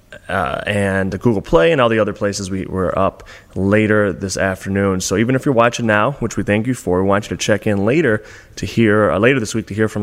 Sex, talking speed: male, 250 wpm